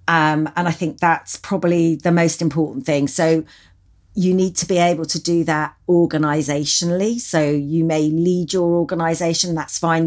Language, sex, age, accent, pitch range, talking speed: English, female, 40-59, British, 145-170 Hz, 165 wpm